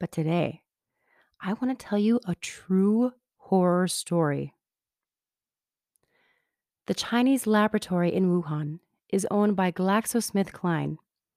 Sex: female